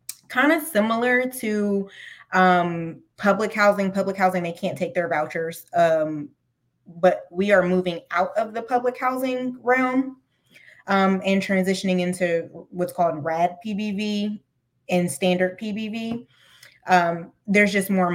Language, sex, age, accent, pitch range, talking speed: English, female, 20-39, American, 165-200 Hz, 130 wpm